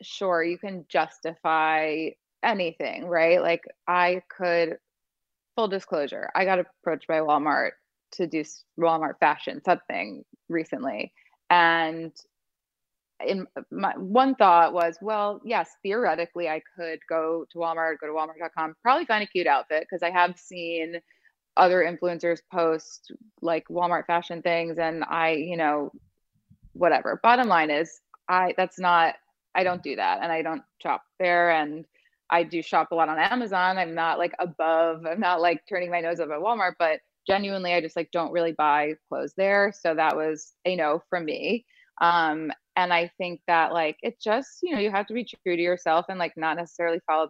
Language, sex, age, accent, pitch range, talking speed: English, female, 20-39, American, 160-180 Hz, 170 wpm